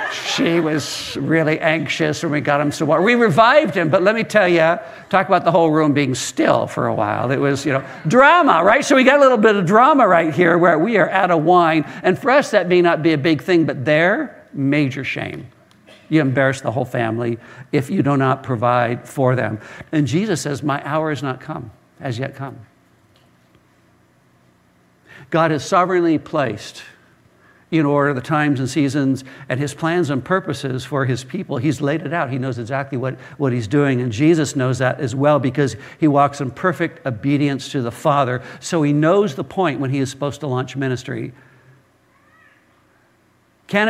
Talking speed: 195 wpm